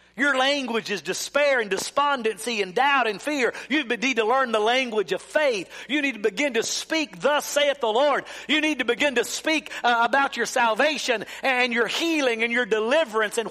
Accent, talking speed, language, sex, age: American, 200 wpm, English, male, 50-69